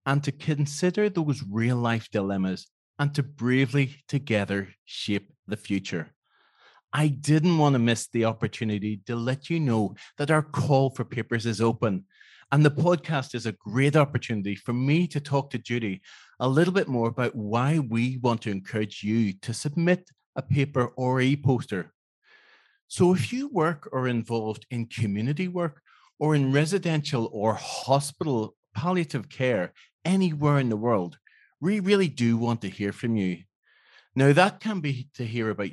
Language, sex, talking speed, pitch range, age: English, male, 165 wpm, 115-150 Hz, 30-49